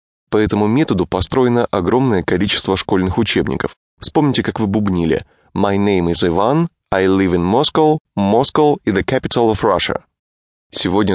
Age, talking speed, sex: 20-39, 145 wpm, male